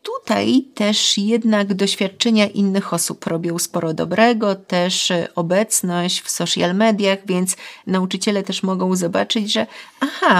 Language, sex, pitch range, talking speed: Polish, female, 185-230 Hz, 120 wpm